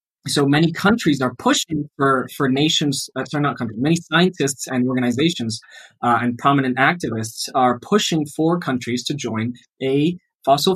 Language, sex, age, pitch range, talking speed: English, male, 20-39, 120-155 Hz, 155 wpm